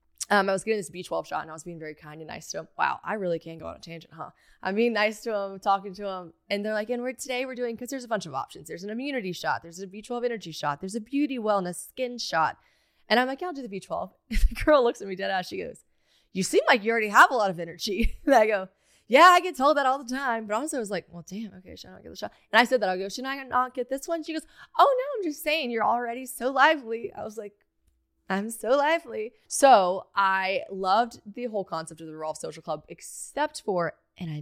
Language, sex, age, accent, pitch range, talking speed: English, female, 20-39, American, 185-255 Hz, 280 wpm